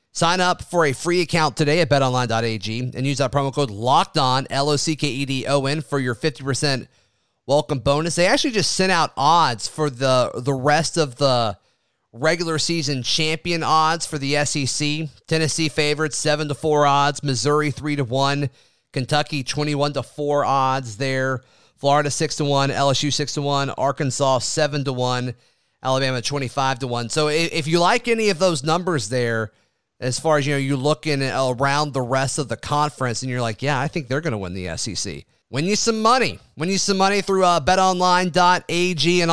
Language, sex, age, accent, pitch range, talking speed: English, male, 30-49, American, 130-160 Hz, 180 wpm